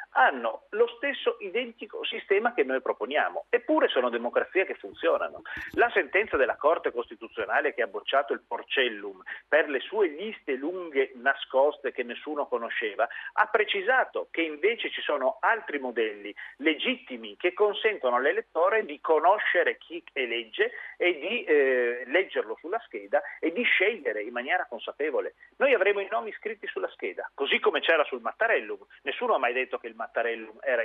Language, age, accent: Italian, 40-59, native